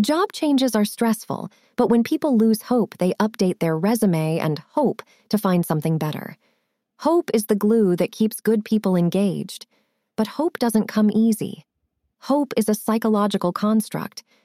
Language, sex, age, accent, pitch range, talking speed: English, female, 20-39, American, 195-240 Hz, 160 wpm